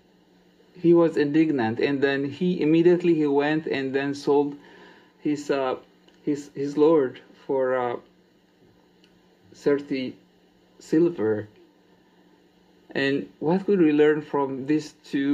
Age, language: 50-69, English